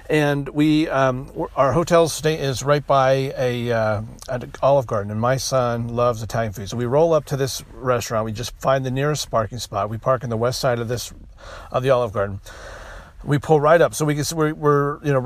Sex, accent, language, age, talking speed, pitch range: male, American, English, 40-59, 225 wpm, 120-145 Hz